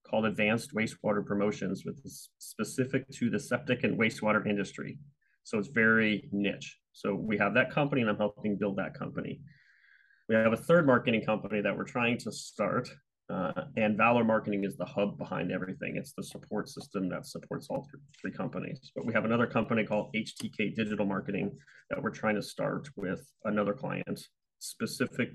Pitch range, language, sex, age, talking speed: 105-125 Hz, English, male, 30-49, 180 wpm